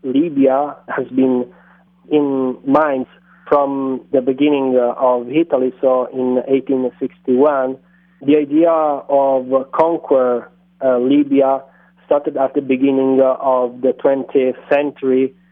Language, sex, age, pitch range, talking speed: English, male, 30-49, 130-145 Hz, 105 wpm